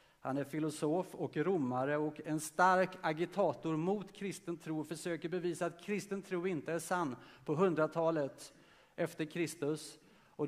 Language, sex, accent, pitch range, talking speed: Swedish, male, Norwegian, 130-170 Hz, 145 wpm